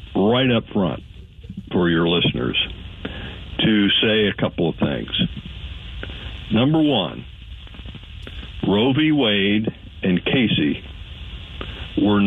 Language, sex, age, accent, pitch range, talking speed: English, male, 60-79, American, 90-105 Hz, 100 wpm